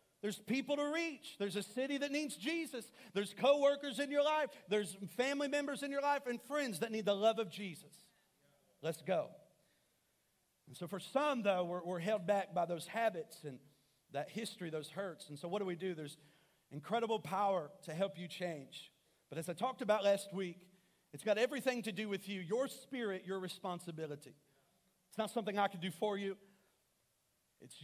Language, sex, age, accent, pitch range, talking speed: English, male, 40-59, American, 150-205 Hz, 190 wpm